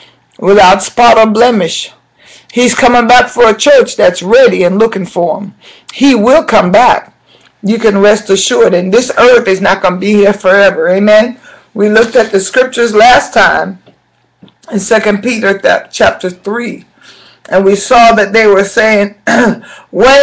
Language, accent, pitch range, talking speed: German, American, 200-235 Hz, 165 wpm